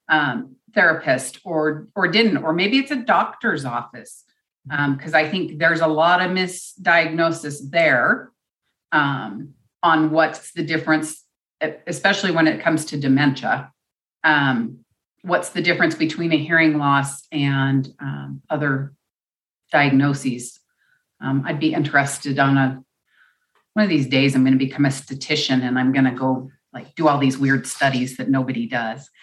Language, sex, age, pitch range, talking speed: English, female, 40-59, 145-185 Hz, 150 wpm